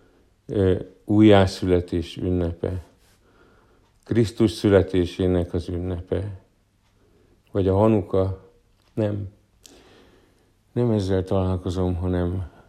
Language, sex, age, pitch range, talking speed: Hungarian, male, 50-69, 95-110 Hz, 65 wpm